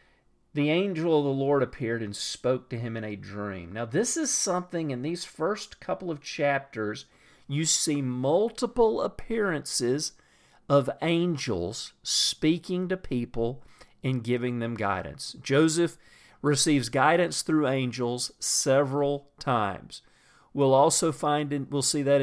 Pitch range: 115-150 Hz